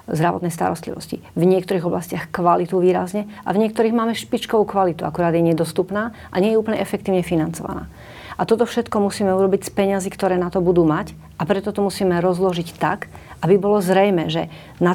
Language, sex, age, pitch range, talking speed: Slovak, female, 40-59, 170-195 Hz, 180 wpm